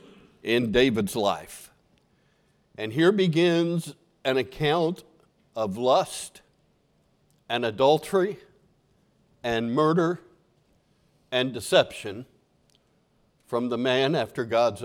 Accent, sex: American, male